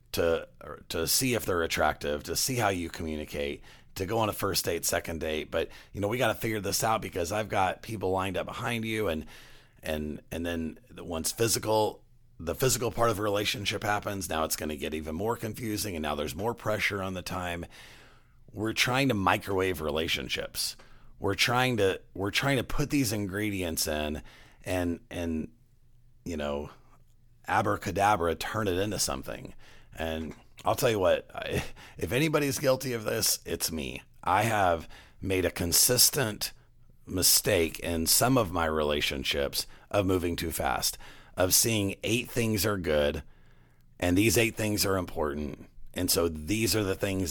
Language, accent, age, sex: English, American, 40-59, male